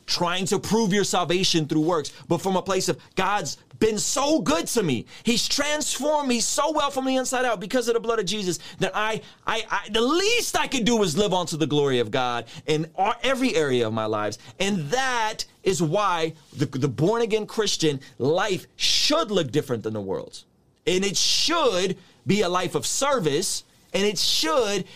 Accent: American